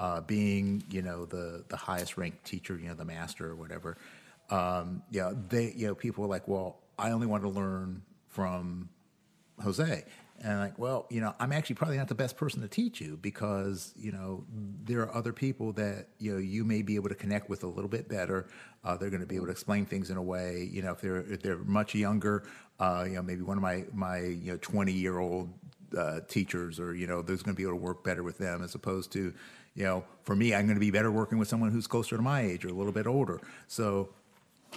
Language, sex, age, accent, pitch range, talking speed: English, male, 50-69, American, 90-110 Hz, 245 wpm